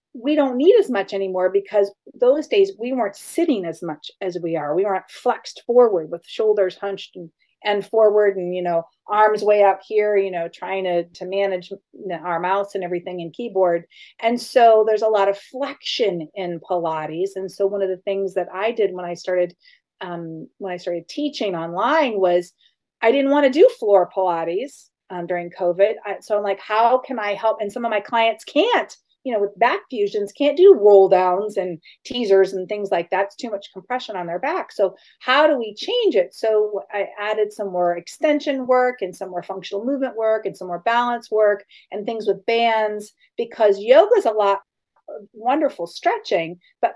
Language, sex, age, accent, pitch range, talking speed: English, female, 40-59, American, 185-240 Hz, 195 wpm